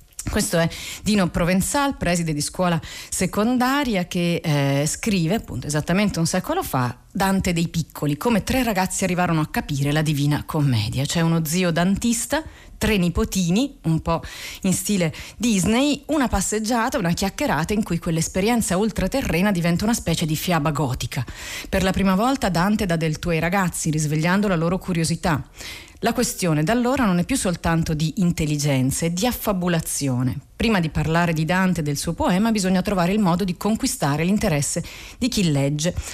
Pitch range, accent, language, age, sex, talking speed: 155-195 Hz, native, Italian, 40-59, female, 165 wpm